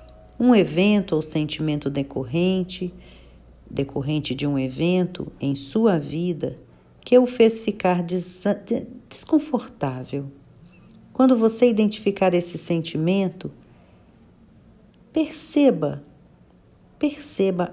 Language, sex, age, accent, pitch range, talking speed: Portuguese, female, 50-69, Brazilian, 145-225 Hz, 80 wpm